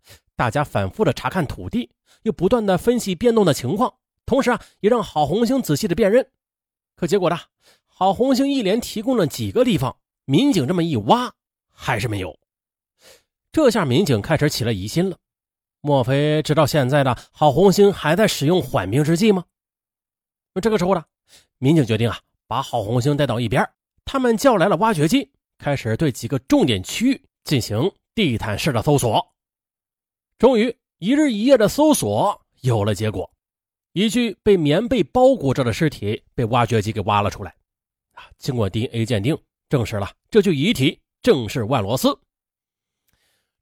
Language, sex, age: Chinese, male, 30-49